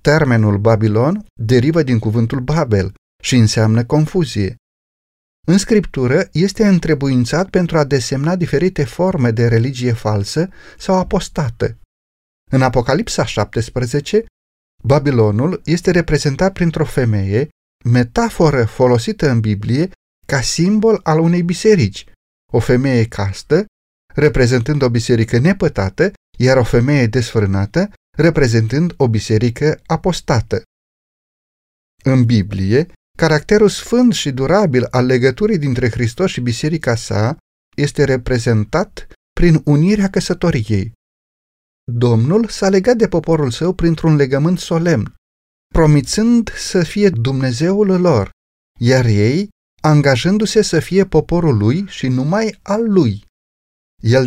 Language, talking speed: Romanian, 110 wpm